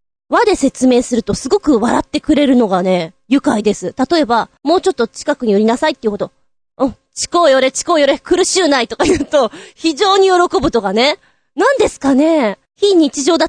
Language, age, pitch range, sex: Japanese, 20-39, 235-335 Hz, female